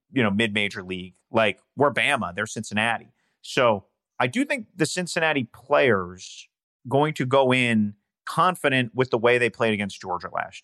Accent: American